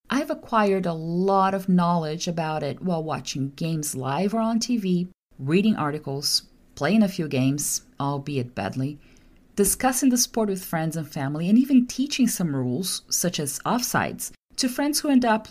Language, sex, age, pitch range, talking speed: English, female, 40-59, 155-210 Hz, 165 wpm